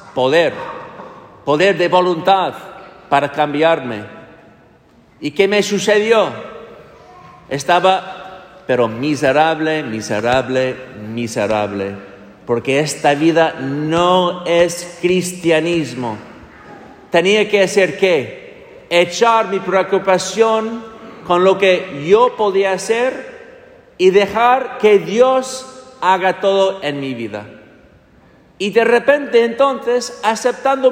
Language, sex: English, male